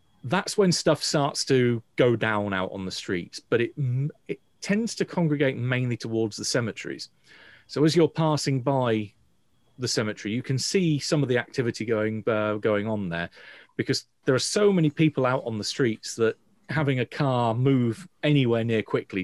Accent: British